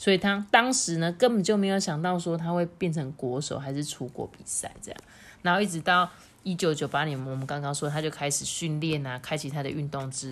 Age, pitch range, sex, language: 30-49, 140-185 Hz, female, Chinese